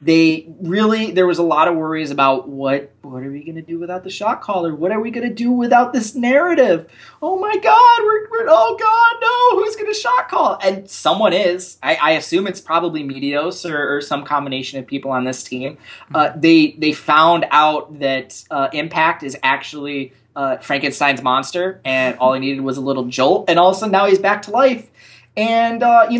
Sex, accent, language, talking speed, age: male, American, English, 215 wpm, 20-39